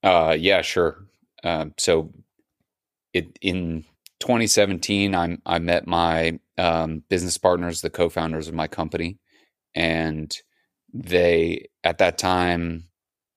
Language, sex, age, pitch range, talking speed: English, male, 30-49, 80-90 Hz, 115 wpm